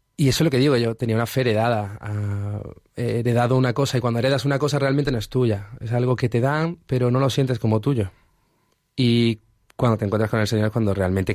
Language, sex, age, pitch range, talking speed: Spanish, male, 20-39, 100-125 Hz, 245 wpm